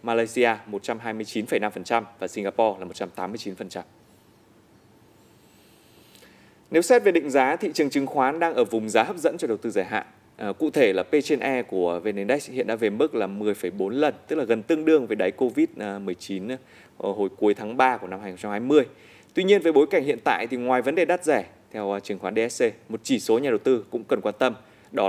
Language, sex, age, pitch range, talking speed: Vietnamese, male, 20-39, 105-165 Hz, 205 wpm